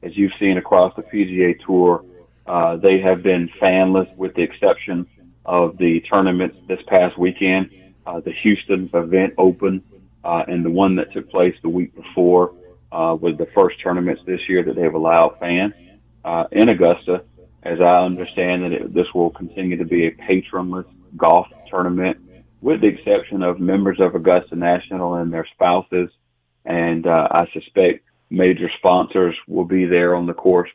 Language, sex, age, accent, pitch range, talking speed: English, male, 40-59, American, 85-95 Hz, 170 wpm